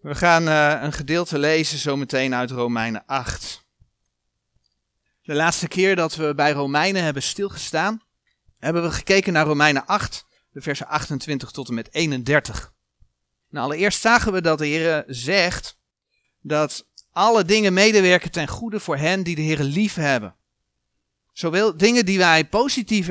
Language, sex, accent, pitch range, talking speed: Dutch, male, Dutch, 150-210 Hz, 150 wpm